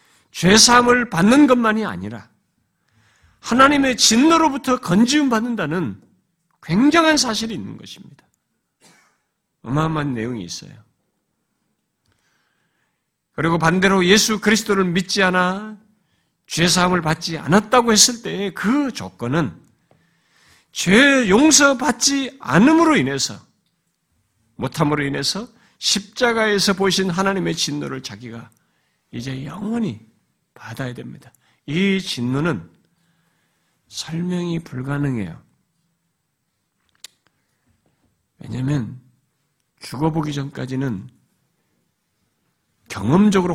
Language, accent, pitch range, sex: Korean, native, 145-225 Hz, male